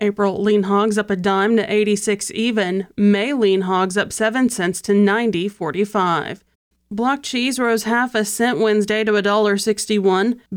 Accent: American